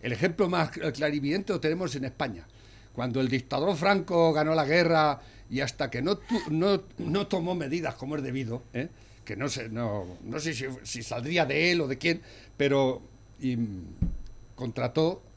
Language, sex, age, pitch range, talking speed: Spanish, male, 60-79, 110-165 Hz, 180 wpm